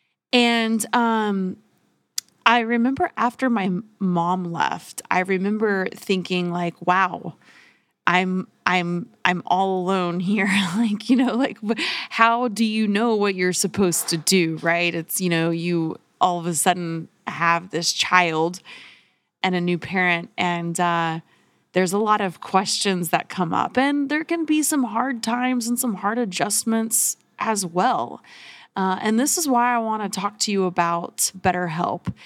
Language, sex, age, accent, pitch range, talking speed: English, female, 20-39, American, 180-225 Hz, 155 wpm